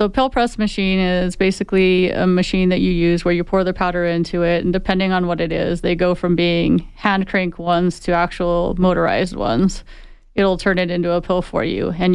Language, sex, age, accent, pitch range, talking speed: English, female, 30-49, American, 175-195 Hz, 215 wpm